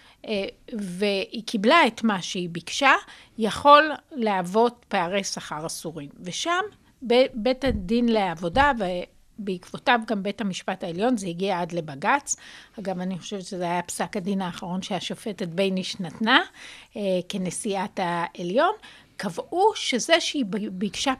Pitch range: 190-255 Hz